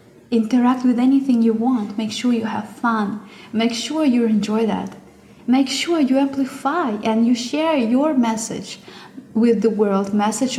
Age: 20-39